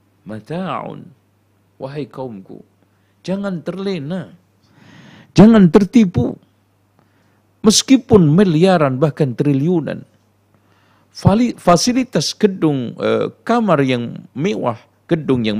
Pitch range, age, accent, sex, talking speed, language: 100-140 Hz, 50-69, native, male, 70 wpm, Indonesian